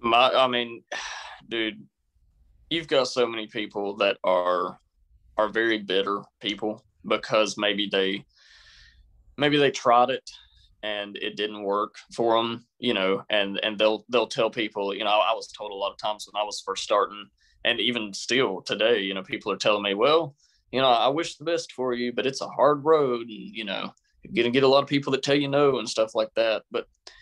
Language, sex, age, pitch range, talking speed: English, male, 20-39, 100-120 Hz, 205 wpm